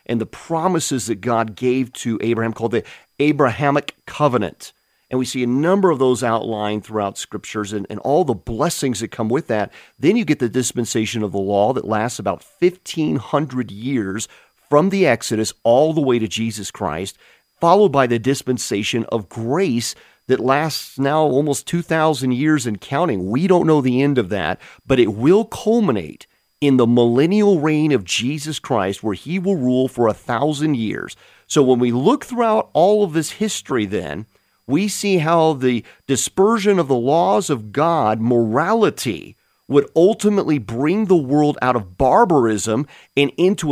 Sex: male